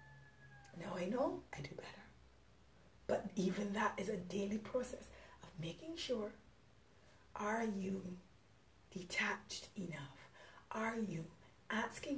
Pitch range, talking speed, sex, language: 145-215 Hz, 115 wpm, female, English